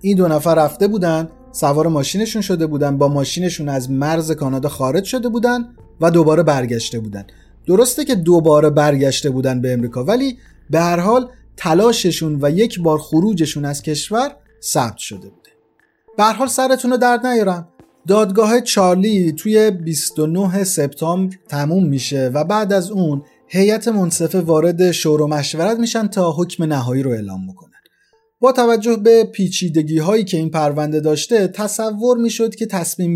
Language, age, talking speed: Persian, 30-49, 155 wpm